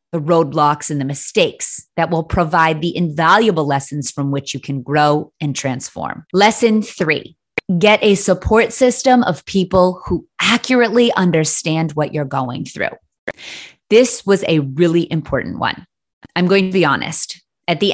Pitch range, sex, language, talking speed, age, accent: 150-195 Hz, female, English, 155 wpm, 30-49, American